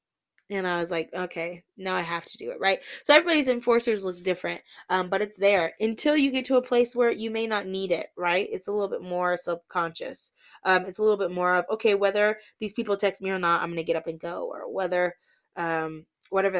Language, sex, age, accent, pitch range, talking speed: English, female, 20-39, American, 175-235 Hz, 235 wpm